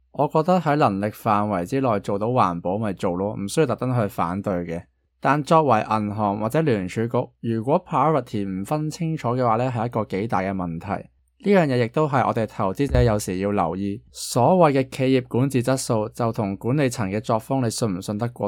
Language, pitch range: Chinese, 100-135 Hz